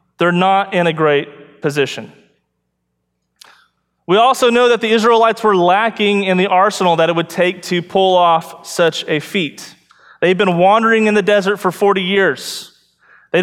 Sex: male